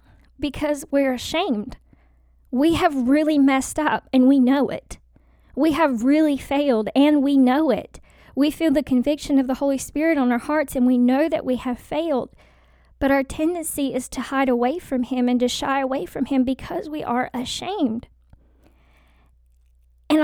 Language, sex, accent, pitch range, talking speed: English, female, American, 245-285 Hz, 170 wpm